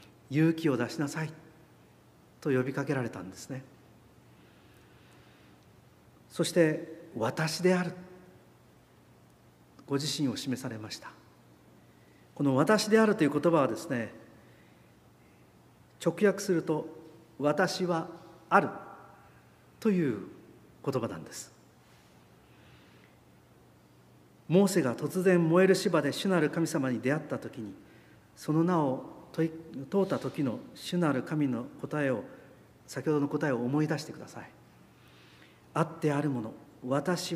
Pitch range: 120-170 Hz